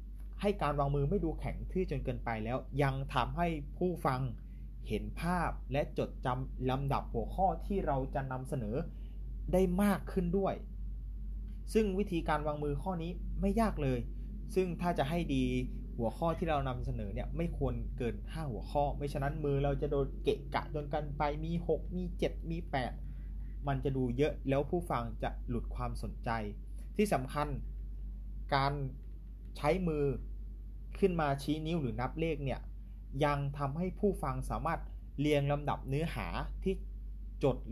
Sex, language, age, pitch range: male, Thai, 20-39, 125-165 Hz